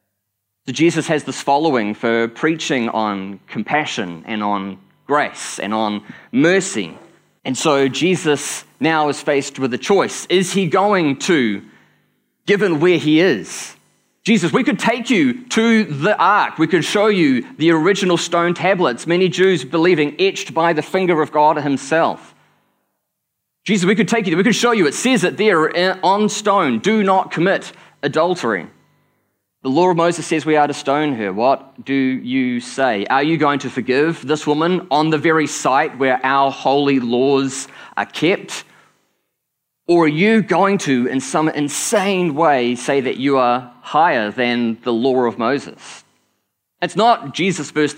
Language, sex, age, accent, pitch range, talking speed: English, male, 20-39, Australian, 130-180 Hz, 165 wpm